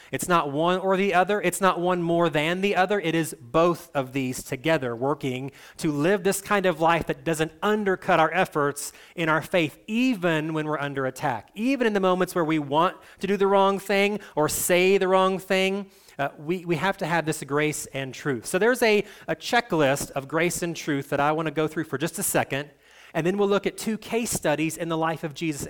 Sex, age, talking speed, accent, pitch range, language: male, 30-49, 230 wpm, American, 145-195 Hz, English